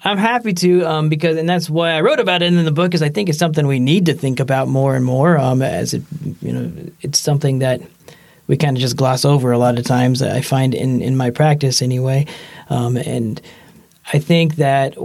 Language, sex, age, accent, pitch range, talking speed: English, male, 30-49, American, 130-160 Hz, 230 wpm